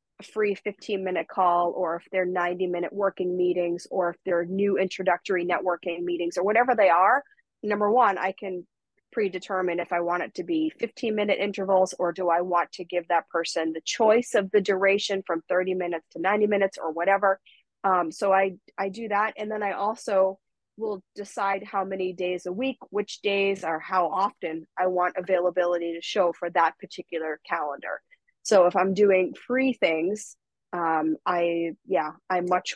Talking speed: 185 wpm